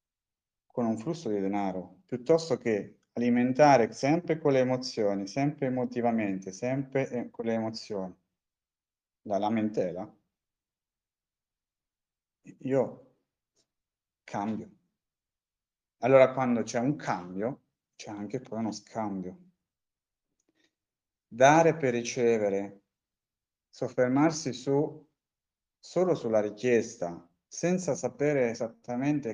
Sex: male